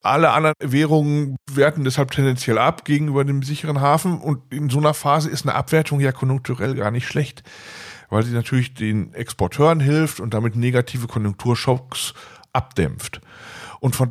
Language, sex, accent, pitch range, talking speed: German, male, German, 120-155 Hz, 155 wpm